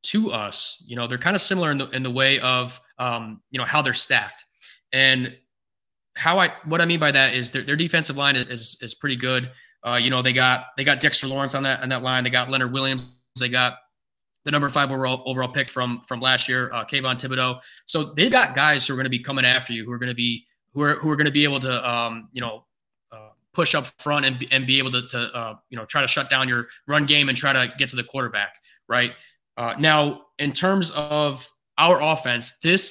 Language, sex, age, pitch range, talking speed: English, male, 20-39, 125-155 Hz, 250 wpm